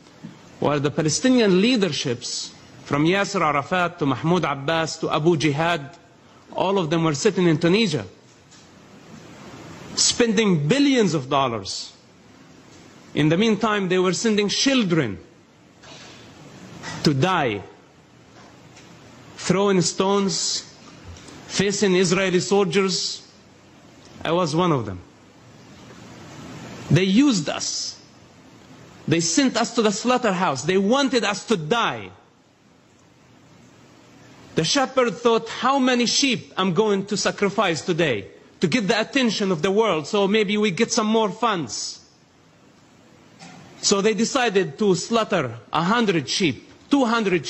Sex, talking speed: male, 115 wpm